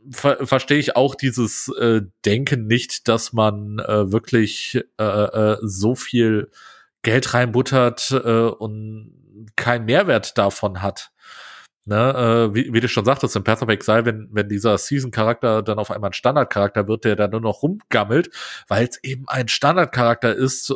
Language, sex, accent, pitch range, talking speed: German, male, German, 110-135 Hz, 165 wpm